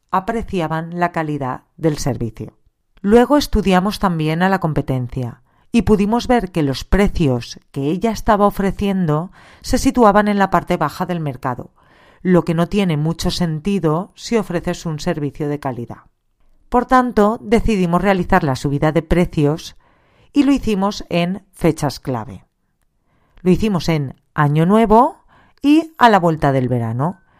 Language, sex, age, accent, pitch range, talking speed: Spanish, female, 40-59, Spanish, 150-200 Hz, 145 wpm